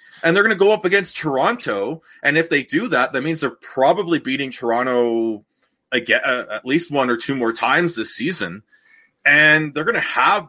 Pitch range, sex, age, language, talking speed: 110-155 Hz, male, 30-49, English, 200 wpm